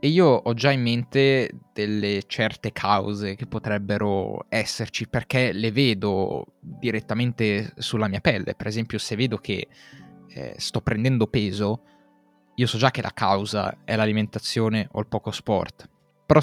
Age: 20-39